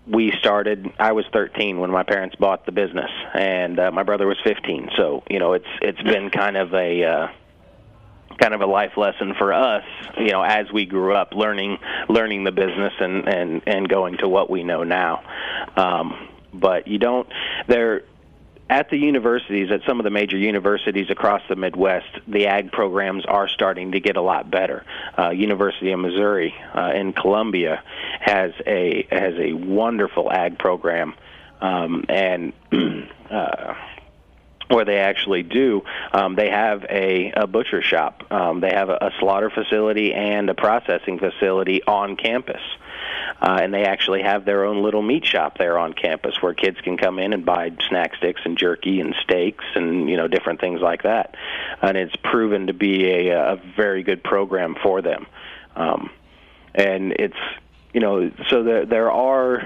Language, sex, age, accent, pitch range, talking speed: English, male, 30-49, American, 95-105 Hz, 175 wpm